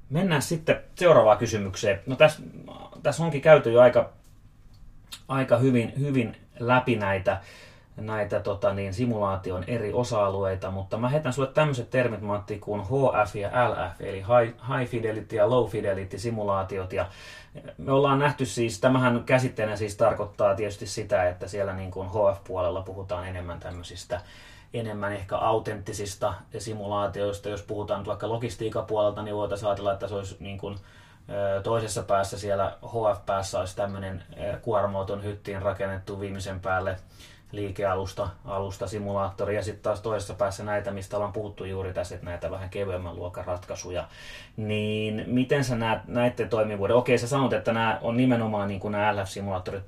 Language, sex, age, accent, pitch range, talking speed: Finnish, male, 30-49, native, 100-120 Hz, 150 wpm